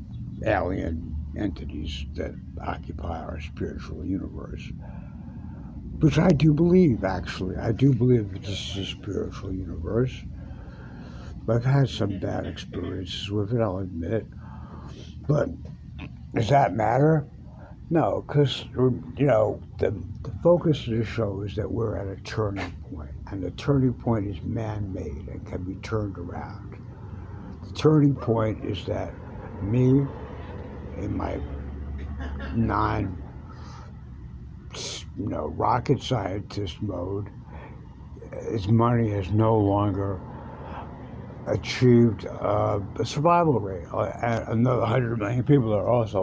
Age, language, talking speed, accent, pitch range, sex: 60-79, English, 120 wpm, American, 90-115 Hz, male